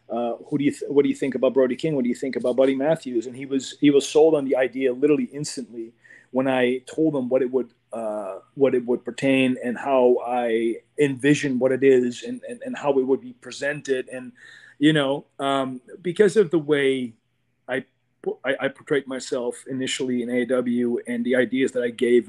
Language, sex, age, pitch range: English, male, 30-49, 125-150 Hz